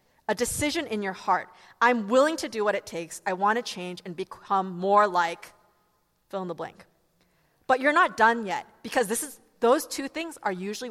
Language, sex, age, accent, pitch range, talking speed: English, female, 20-39, American, 190-265 Hz, 205 wpm